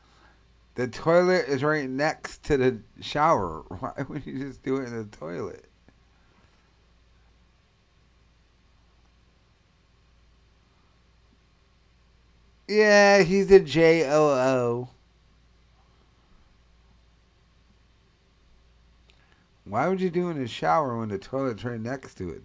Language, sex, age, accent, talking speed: English, male, 50-69, American, 100 wpm